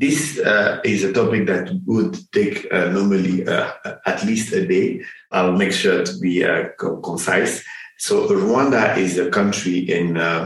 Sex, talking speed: male, 165 wpm